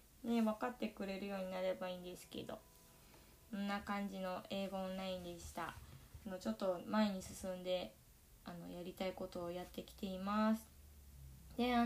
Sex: female